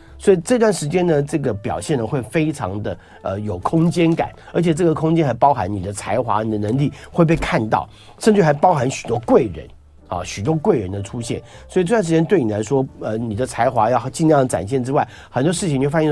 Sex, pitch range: male, 105-160 Hz